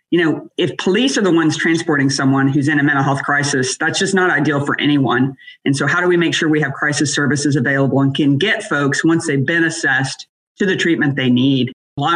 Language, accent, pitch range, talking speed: English, American, 140-175 Hz, 230 wpm